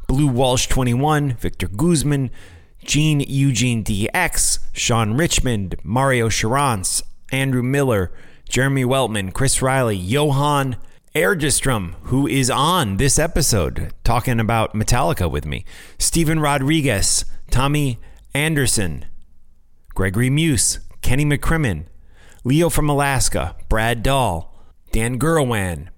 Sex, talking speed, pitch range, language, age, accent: male, 105 wpm, 90-135 Hz, English, 30-49, American